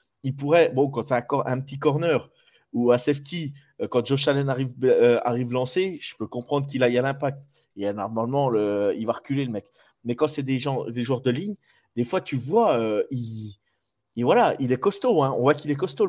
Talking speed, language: 240 wpm, French